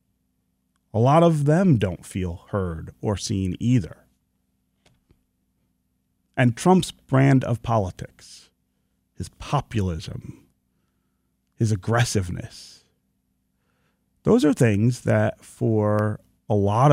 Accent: American